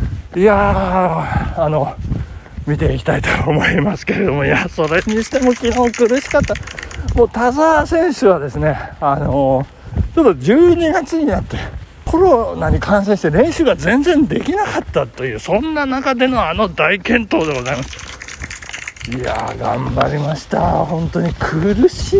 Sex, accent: male, native